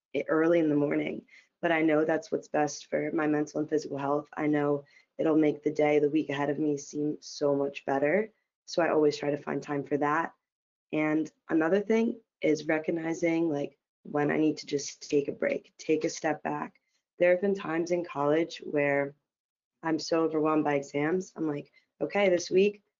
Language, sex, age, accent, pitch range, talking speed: English, female, 20-39, American, 145-165 Hz, 195 wpm